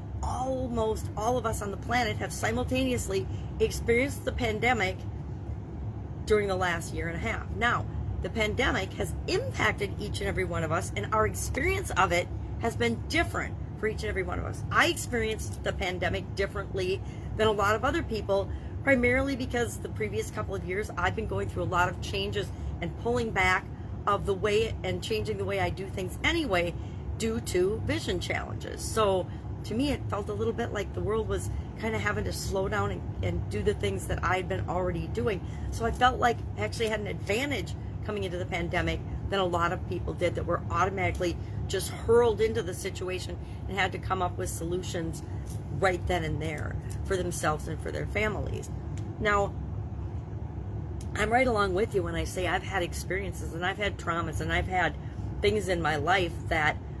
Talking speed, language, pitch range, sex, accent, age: 195 wpm, English, 95-115 Hz, female, American, 40-59